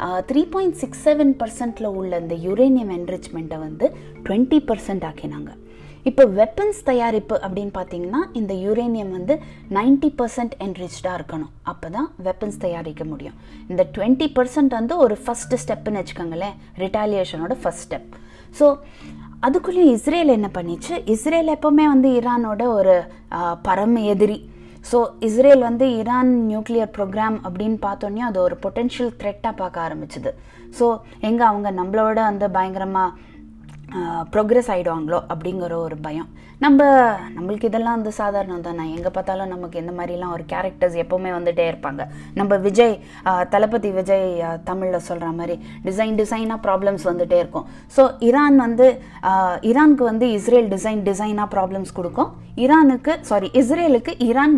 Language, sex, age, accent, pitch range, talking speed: Tamil, female, 20-39, native, 180-245 Hz, 130 wpm